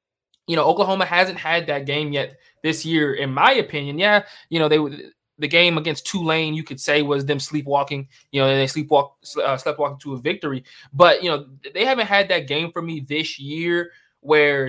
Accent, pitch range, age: American, 145-180 Hz, 20-39